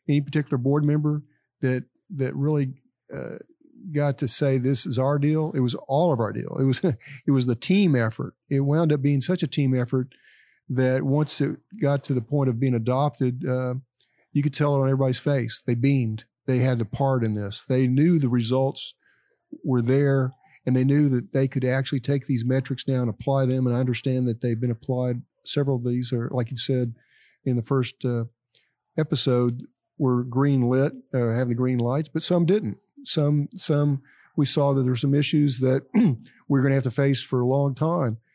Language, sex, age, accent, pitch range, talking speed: English, male, 50-69, American, 125-145 Hz, 205 wpm